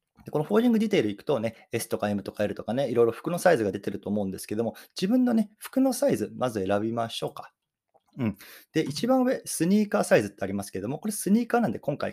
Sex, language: male, Japanese